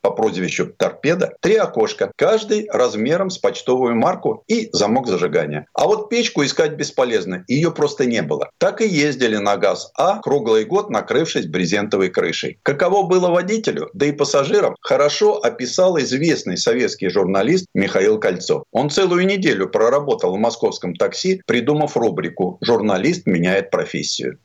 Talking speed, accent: 140 wpm, native